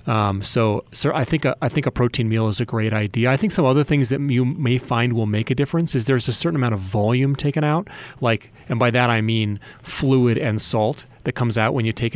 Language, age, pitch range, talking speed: English, 30-49, 110-130 Hz, 260 wpm